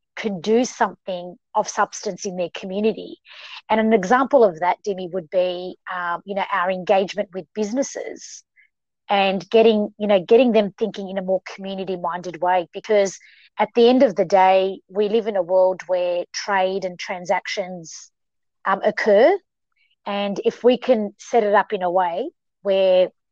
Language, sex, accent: English, female, Australian